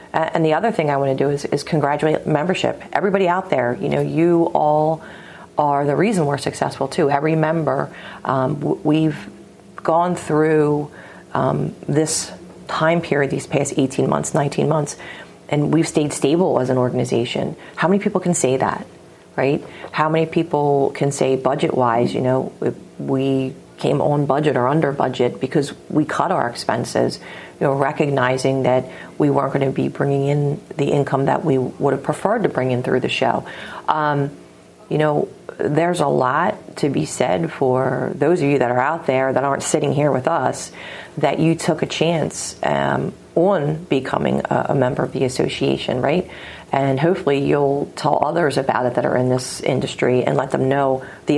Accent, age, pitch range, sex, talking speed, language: American, 40-59, 130-155 Hz, female, 180 wpm, English